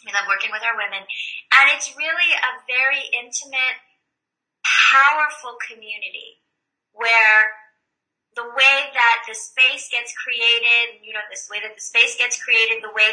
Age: 30-49